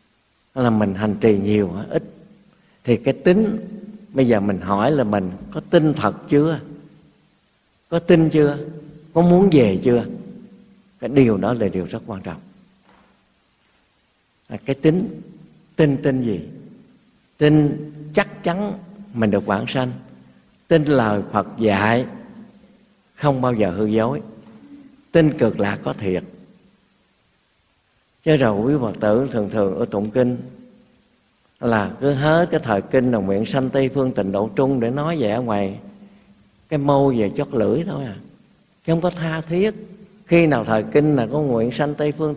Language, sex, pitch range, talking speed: Vietnamese, male, 115-165 Hz, 155 wpm